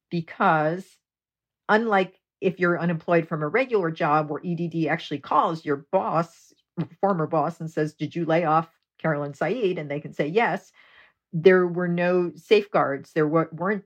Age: 50-69